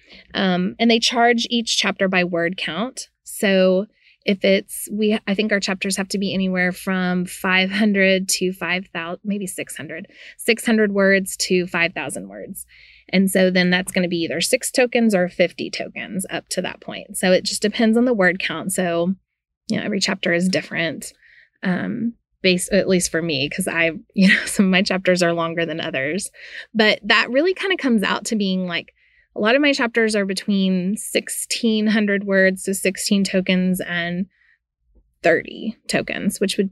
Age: 20-39